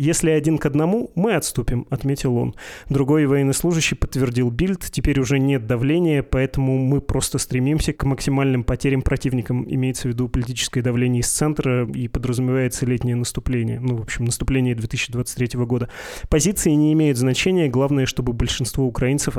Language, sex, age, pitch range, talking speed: Russian, male, 20-39, 125-145 Hz, 150 wpm